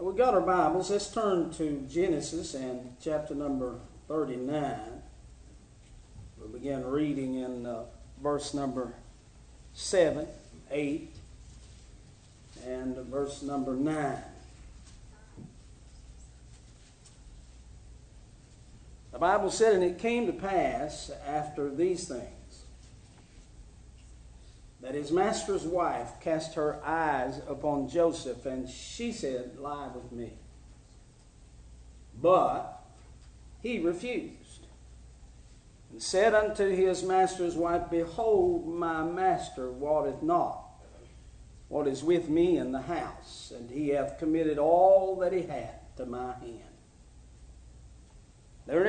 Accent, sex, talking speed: American, male, 105 wpm